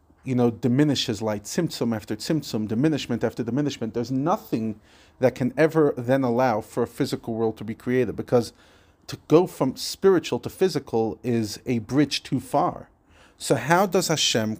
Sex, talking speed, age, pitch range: male, 165 wpm, 40-59, 110-150 Hz